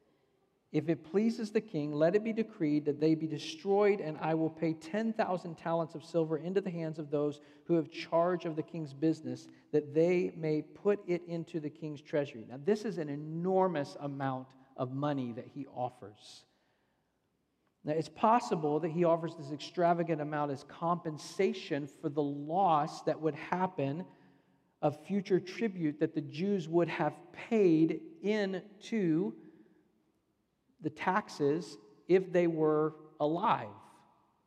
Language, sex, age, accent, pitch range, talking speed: English, male, 50-69, American, 150-190 Hz, 150 wpm